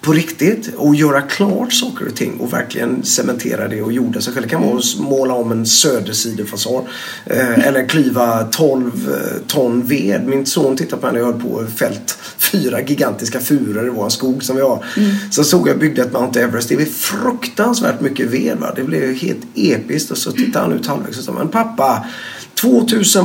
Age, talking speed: 30-49, 185 wpm